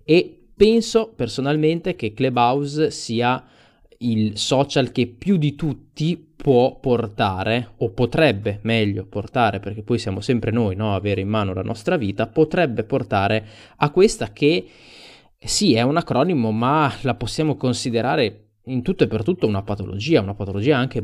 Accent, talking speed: native, 155 wpm